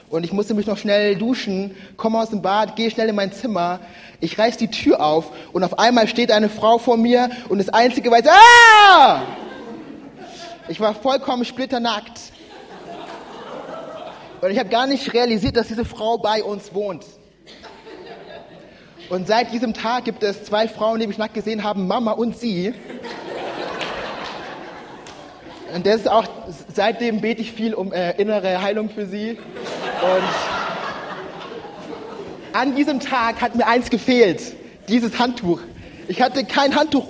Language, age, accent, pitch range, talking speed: German, 30-49, German, 195-240 Hz, 150 wpm